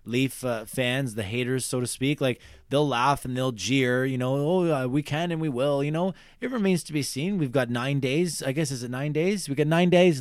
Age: 20-39